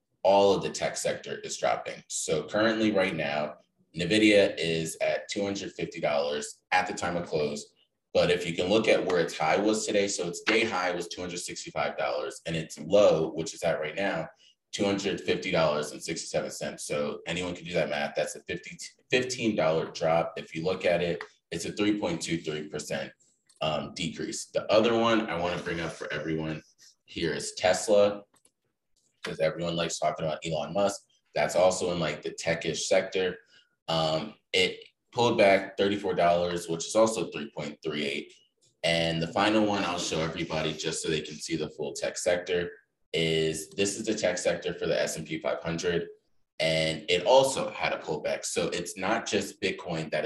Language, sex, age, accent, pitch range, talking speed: English, male, 20-39, American, 80-105 Hz, 170 wpm